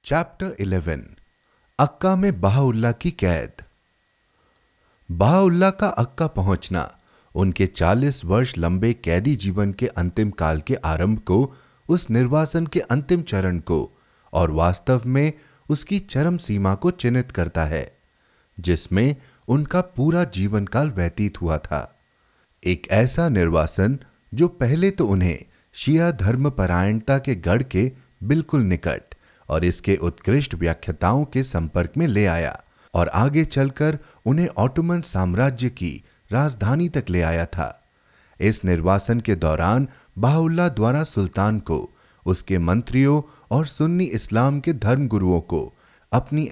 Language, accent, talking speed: Hindi, native, 105 wpm